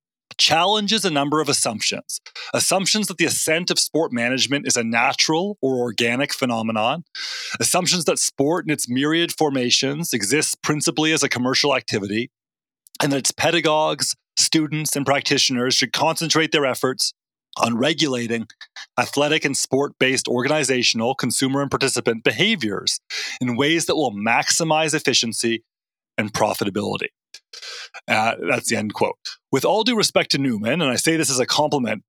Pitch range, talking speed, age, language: 120-160 Hz, 145 wpm, 30-49, English